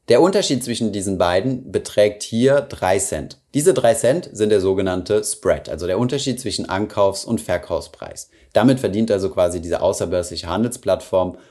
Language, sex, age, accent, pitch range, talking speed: German, male, 30-49, German, 100-130 Hz, 155 wpm